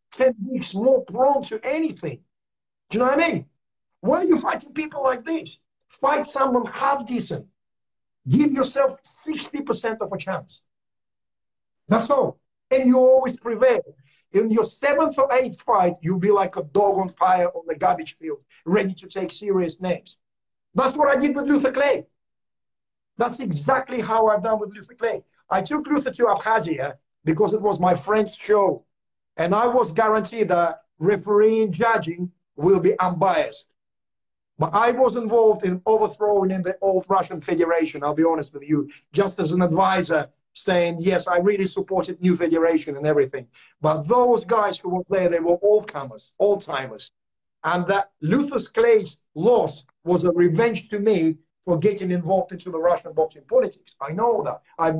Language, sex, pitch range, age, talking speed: English, male, 175-245 Hz, 50-69, 170 wpm